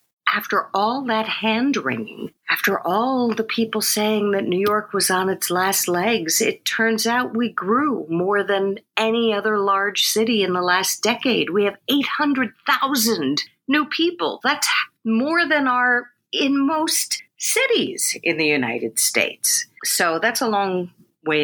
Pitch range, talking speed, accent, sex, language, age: 150-235 Hz, 150 wpm, American, female, English, 50-69